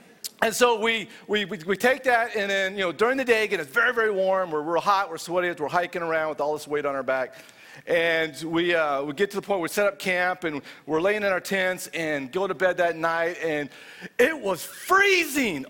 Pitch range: 160-220 Hz